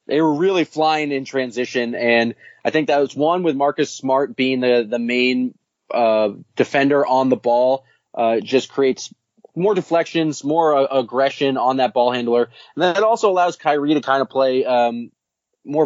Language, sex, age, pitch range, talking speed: English, male, 20-39, 120-145 Hz, 180 wpm